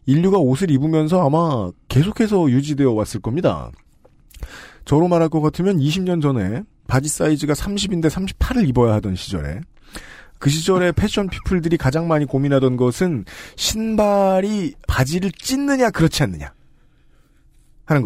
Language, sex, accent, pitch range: Korean, male, native, 115-165 Hz